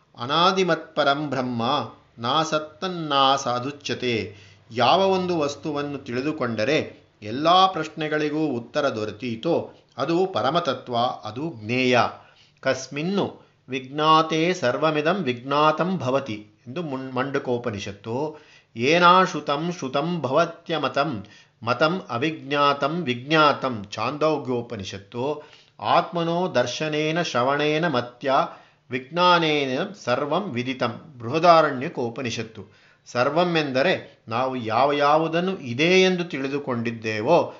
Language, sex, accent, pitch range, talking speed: Kannada, male, native, 125-160 Hz, 65 wpm